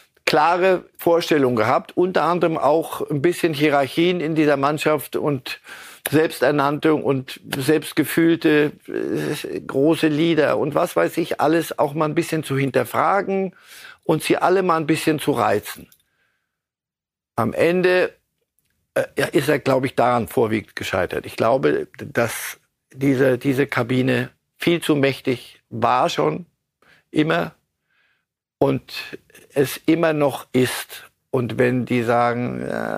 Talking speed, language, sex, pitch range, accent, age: 125 wpm, German, male, 130-160 Hz, German, 50-69